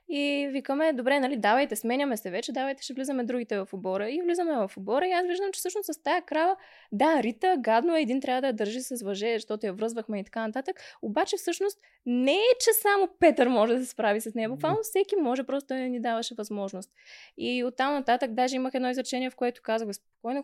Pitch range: 215-275 Hz